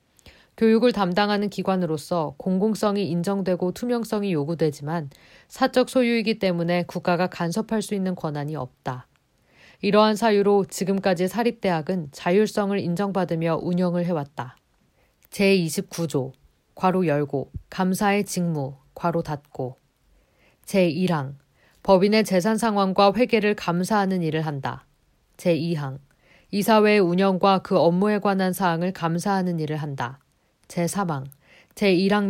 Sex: female